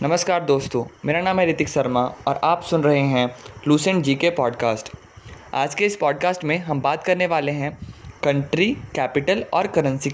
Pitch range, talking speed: 125-165 Hz, 170 wpm